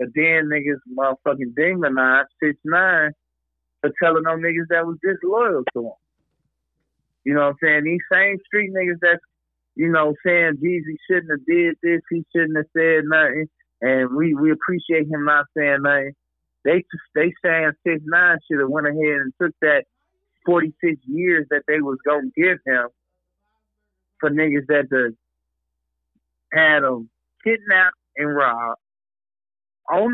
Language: English